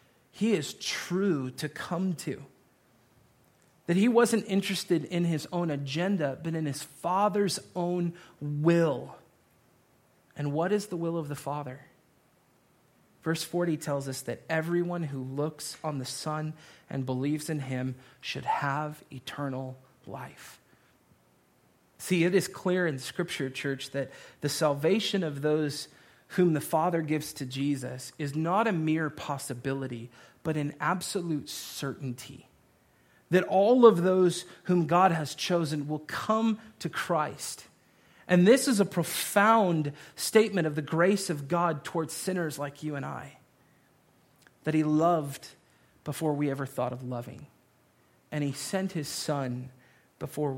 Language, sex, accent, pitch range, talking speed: English, male, American, 140-175 Hz, 140 wpm